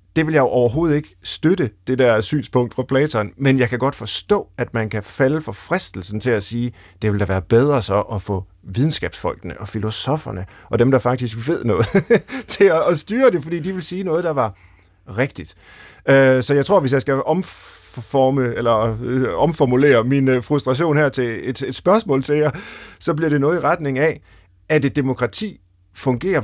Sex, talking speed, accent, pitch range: male, 190 wpm, native, 100-145 Hz